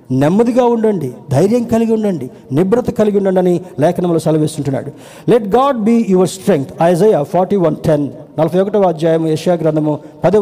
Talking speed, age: 140 wpm, 50-69